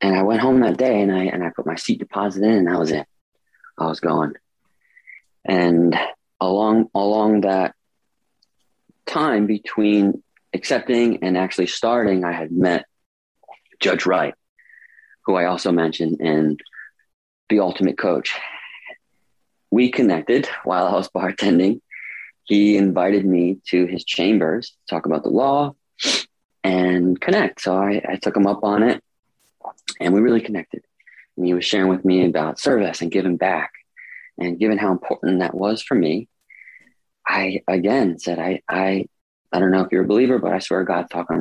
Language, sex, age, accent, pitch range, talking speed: English, male, 30-49, American, 85-105 Hz, 170 wpm